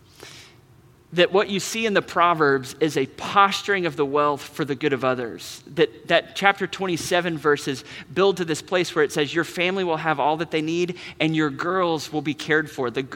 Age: 30-49